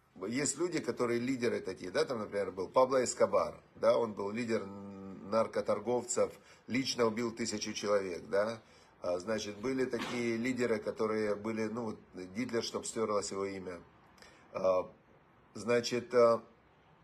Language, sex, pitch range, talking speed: Russian, male, 110-135 Hz, 120 wpm